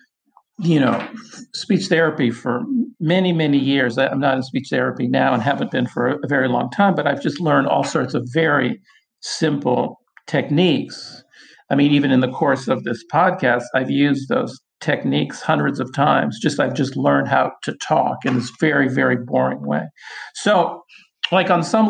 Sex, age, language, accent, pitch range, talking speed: male, 50-69, English, American, 135-175 Hz, 180 wpm